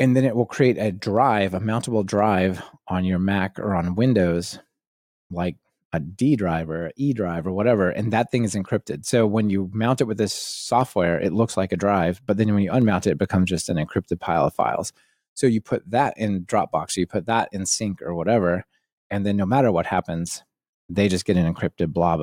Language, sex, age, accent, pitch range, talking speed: English, male, 30-49, American, 85-110 Hz, 225 wpm